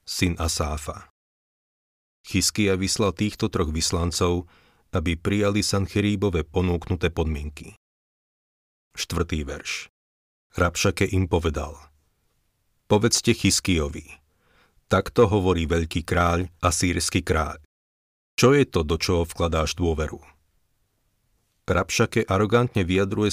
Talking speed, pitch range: 90 wpm, 85-100 Hz